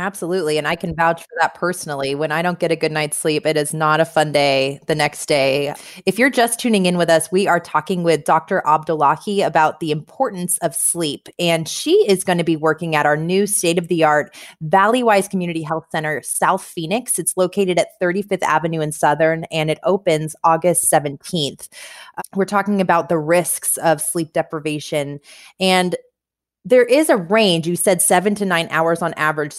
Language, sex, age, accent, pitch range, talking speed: English, female, 20-39, American, 155-190 Hz, 190 wpm